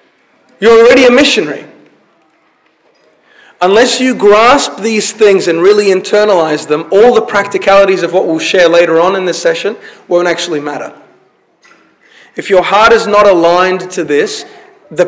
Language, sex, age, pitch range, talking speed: English, male, 30-49, 180-240 Hz, 145 wpm